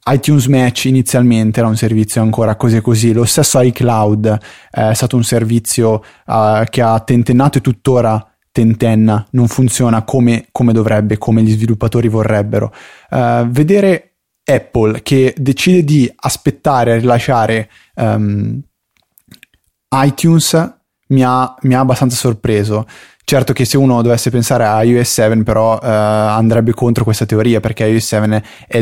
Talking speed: 140 wpm